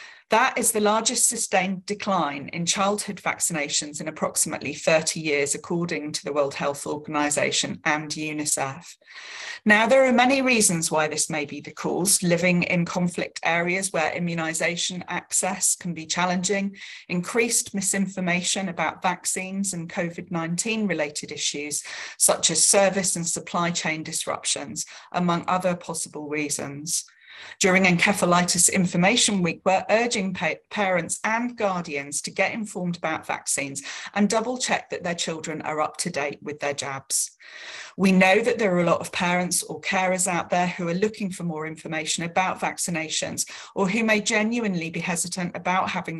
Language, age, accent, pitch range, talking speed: English, 40-59, British, 155-195 Hz, 150 wpm